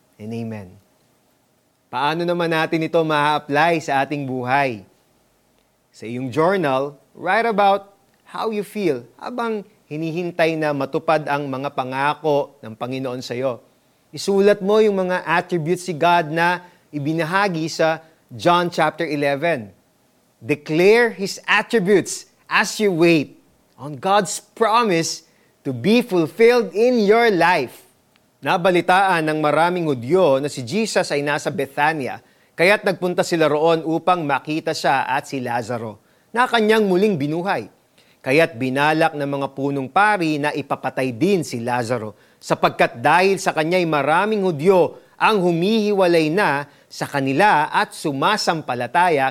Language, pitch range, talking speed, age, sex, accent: Filipino, 140-190 Hz, 130 wpm, 30-49, male, native